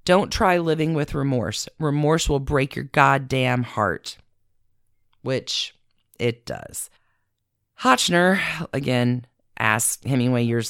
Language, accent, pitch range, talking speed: English, American, 125-195 Hz, 105 wpm